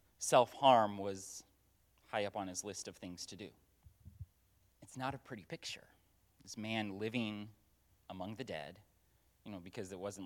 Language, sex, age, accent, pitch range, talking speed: English, male, 30-49, American, 95-110 Hz, 160 wpm